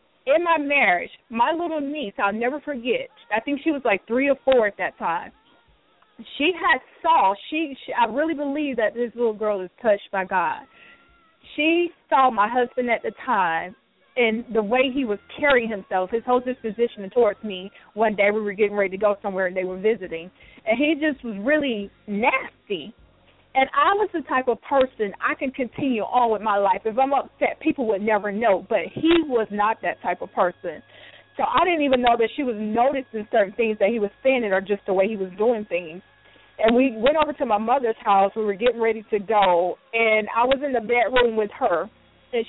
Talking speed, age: 210 wpm, 30-49